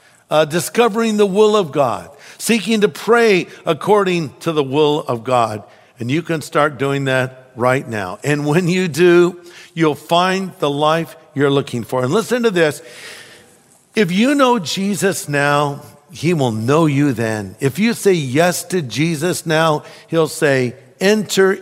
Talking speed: 160 wpm